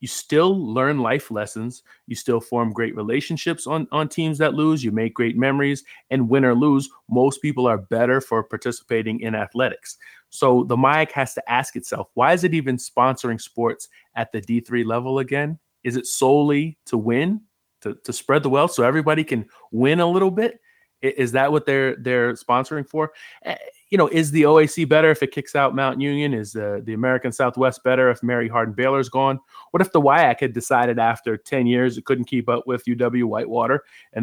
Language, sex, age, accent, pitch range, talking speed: English, male, 30-49, American, 115-140 Hz, 195 wpm